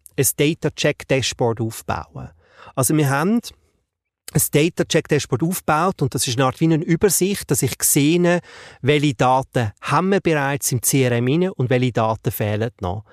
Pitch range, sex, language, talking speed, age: 125-160 Hz, male, German, 150 wpm, 30-49